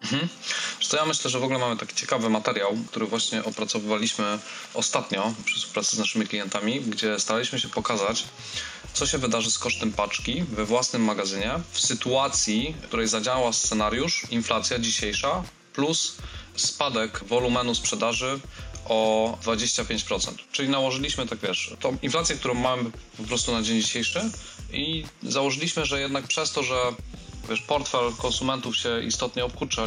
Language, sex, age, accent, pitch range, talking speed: Polish, male, 20-39, native, 110-125 Hz, 140 wpm